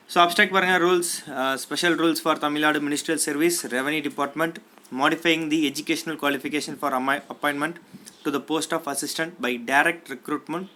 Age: 20-39